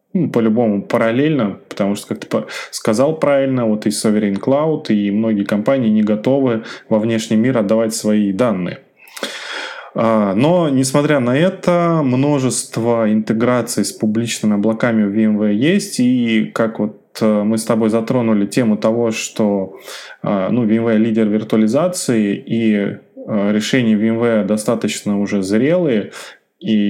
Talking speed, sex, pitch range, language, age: 125 wpm, male, 110-130 Hz, Russian, 20-39